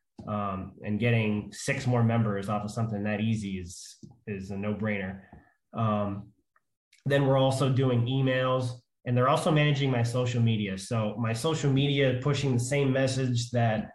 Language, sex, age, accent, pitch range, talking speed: English, male, 20-39, American, 105-125 Hz, 165 wpm